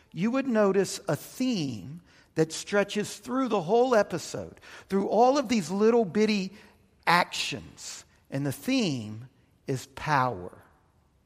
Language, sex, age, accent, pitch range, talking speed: English, male, 50-69, American, 160-210 Hz, 125 wpm